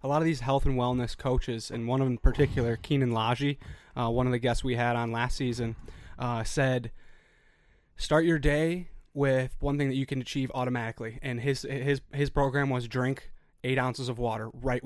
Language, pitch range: English, 120-140 Hz